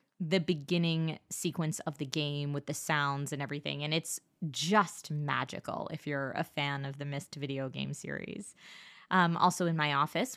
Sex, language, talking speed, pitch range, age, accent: female, English, 175 wpm, 155-220 Hz, 20-39, American